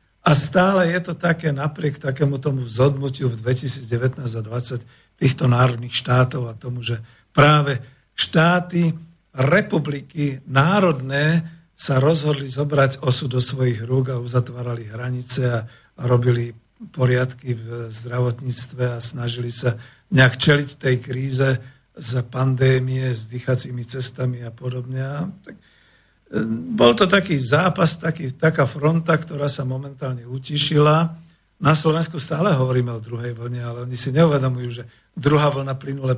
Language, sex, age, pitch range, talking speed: Slovak, male, 50-69, 125-145 Hz, 130 wpm